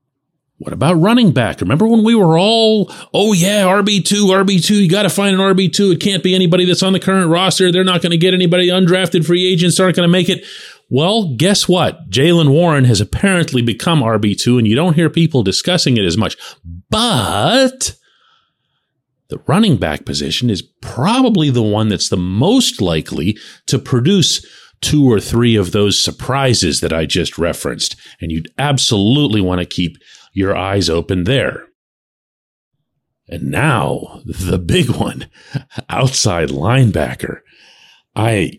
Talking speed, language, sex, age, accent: 160 wpm, English, male, 40-59, American